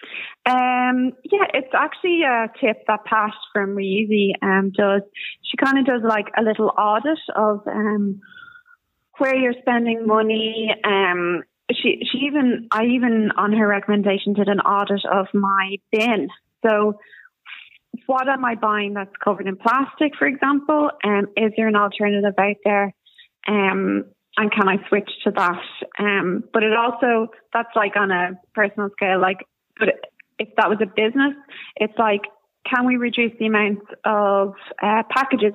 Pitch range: 200-235 Hz